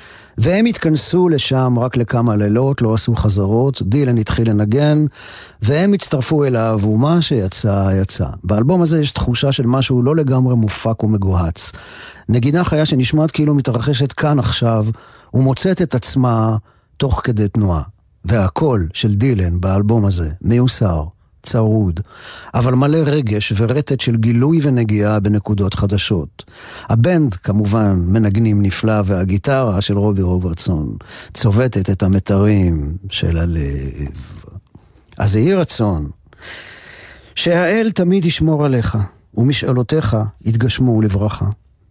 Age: 50-69